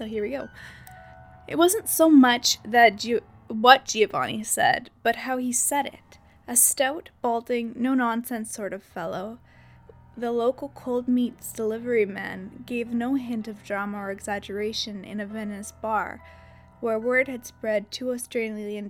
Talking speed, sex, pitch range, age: 150 wpm, female, 205-245 Hz, 10-29